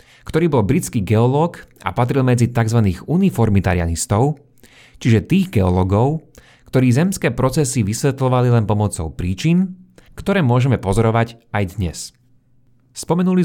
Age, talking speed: 30-49, 110 wpm